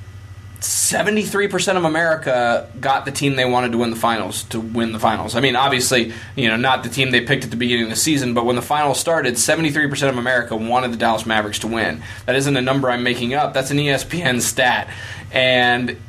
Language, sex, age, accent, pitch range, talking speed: English, male, 20-39, American, 115-140 Hz, 215 wpm